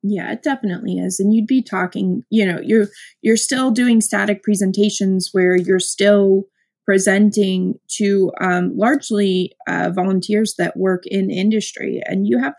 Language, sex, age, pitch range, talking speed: English, female, 20-39, 190-225 Hz, 155 wpm